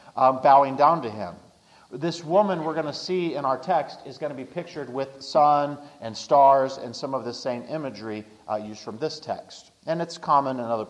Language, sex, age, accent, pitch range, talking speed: English, male, 40-59, American, 120-160 Hz, 215 wpm